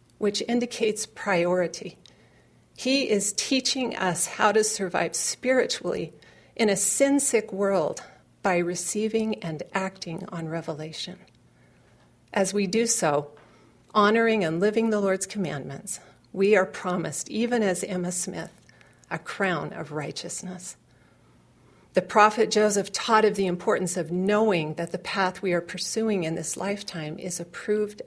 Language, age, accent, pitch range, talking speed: English, 40-59, American, 175-210 Hz, 130 wpm